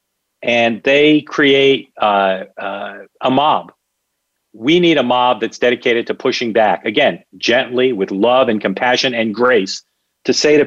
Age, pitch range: 40-59, 115-150 Hz